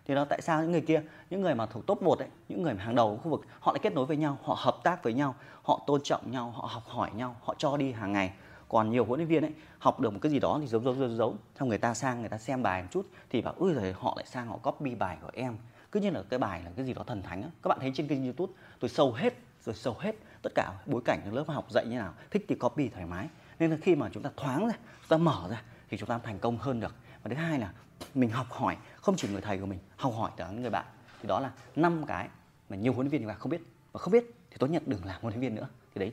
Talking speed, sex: 310 wpm, male